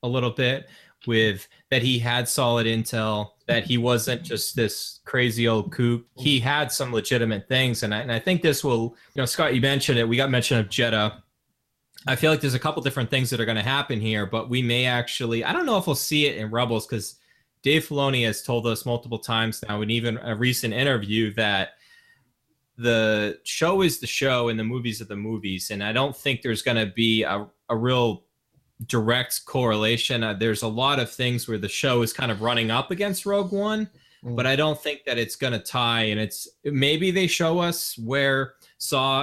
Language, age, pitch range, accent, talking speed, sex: English, 20-39, 115-135 Hz, American, 215 wpm, male